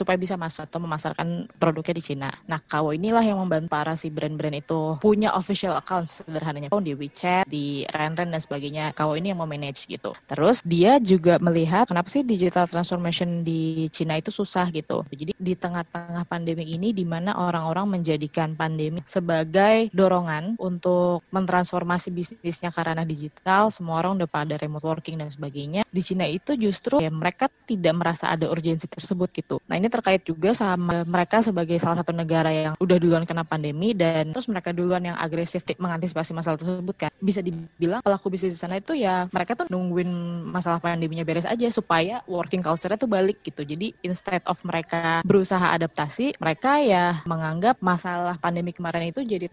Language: English